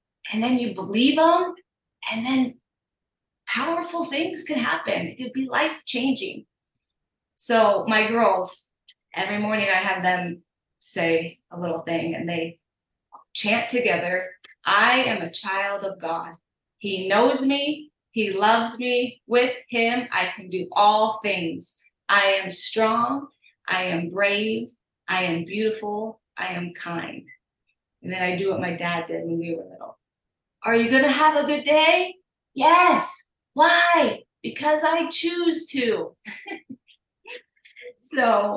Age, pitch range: 30-49, 185-265 Hz